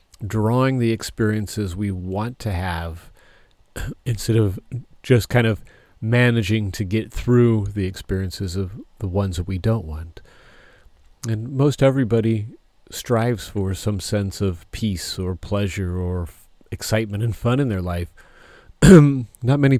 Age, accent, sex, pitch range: 40-59, American, male, 100-120 Hz